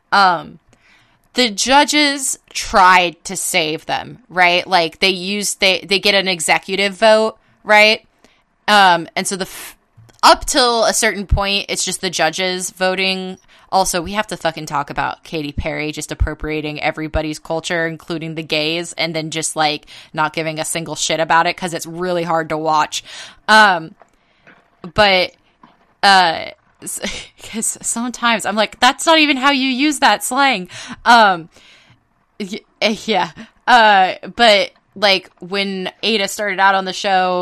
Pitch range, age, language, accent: 165-200 Hz, 20-39, English, American